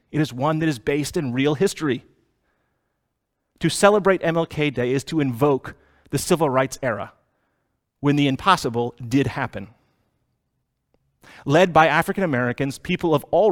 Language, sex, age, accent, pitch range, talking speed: English, male, 30-49, American, 110-160 Hz, 140 wpm